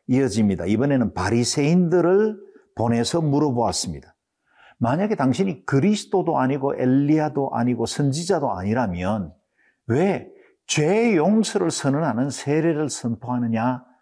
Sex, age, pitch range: male, 50-69, 110-170 Hz